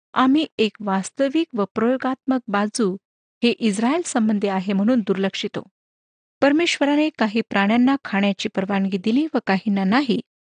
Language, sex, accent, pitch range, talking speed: Marathi, female, native, 195-265 Hz, 125 wpm